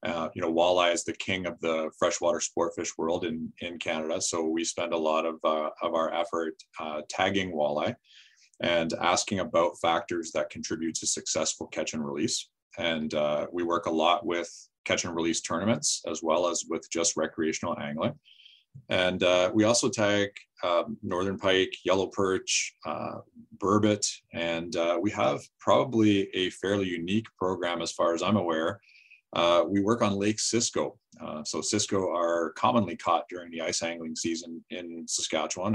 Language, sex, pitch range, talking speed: English, male, 85-105 Hz, 170 wpm